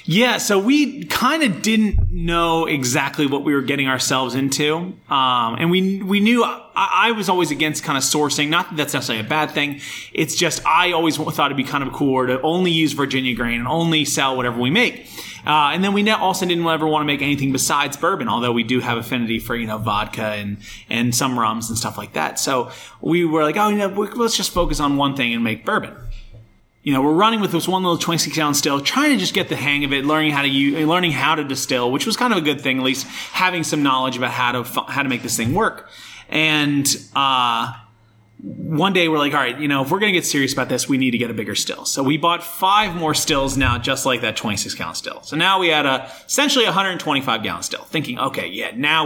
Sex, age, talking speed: male, 30-49, 245 wpm